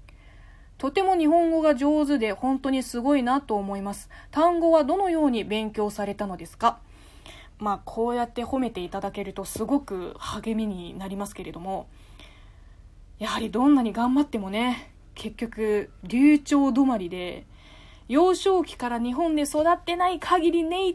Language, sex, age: Japanese, female, 20-39